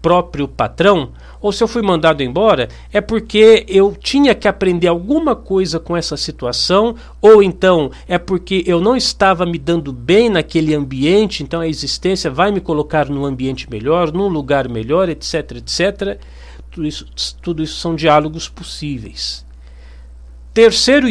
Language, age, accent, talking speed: Portuguese, 50-69, Brazilian, 150 wpm